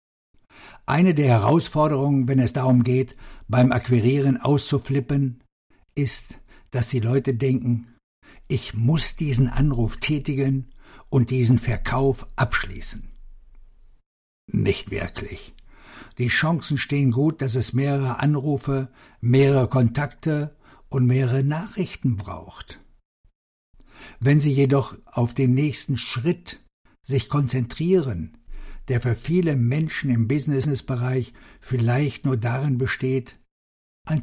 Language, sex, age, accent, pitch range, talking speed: German, male, 60-79, German, 120-145 Hz, 105 wpm